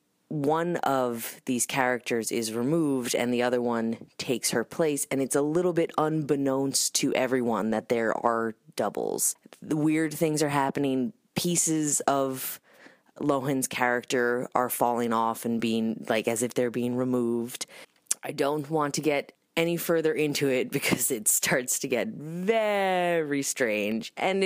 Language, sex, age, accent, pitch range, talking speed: English, female, 20-39, American, 120-155 Hz, 150 wpm